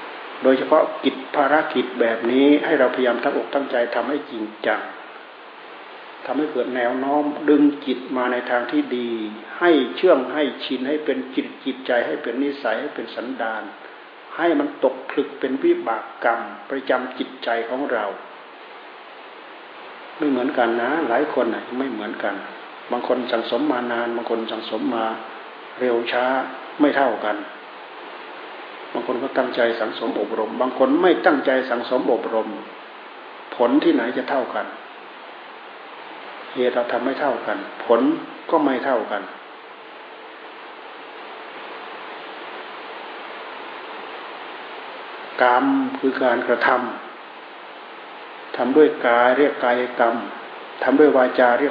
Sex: male